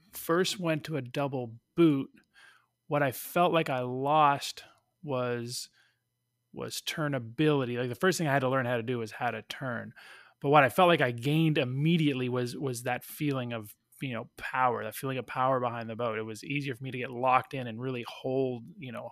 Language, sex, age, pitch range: English, male, 20-39, 125-150 Hz